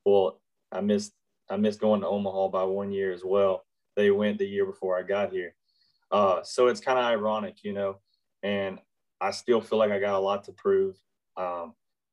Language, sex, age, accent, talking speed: English, male, 30-49, American, 205 wpm